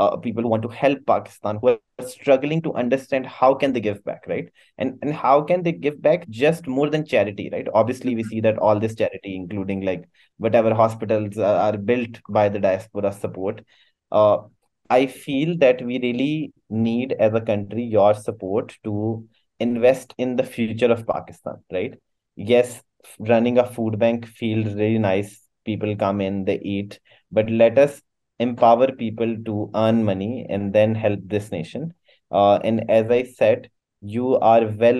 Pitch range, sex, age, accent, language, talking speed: 105-120 Hz, male, 20-39, Indian, English, 175 wpm